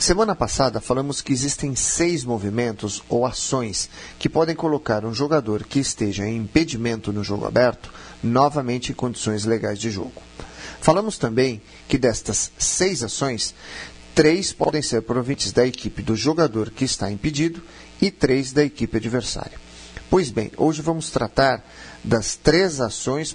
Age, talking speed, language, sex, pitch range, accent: 40-59, 145 wpm, Portuguese, male, 110-150 Hz, Brazilian